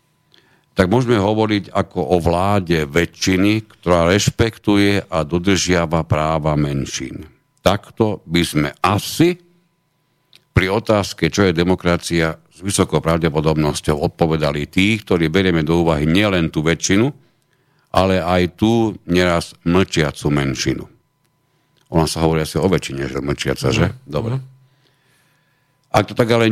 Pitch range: 80-105 Hz